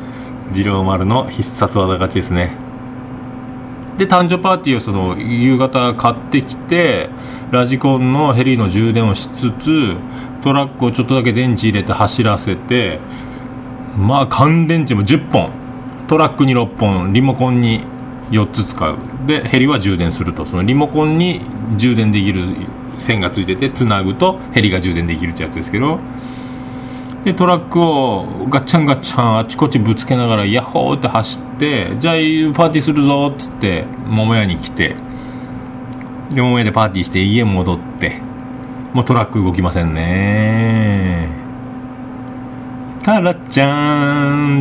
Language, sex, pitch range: Japanese, male, 110-140 Hz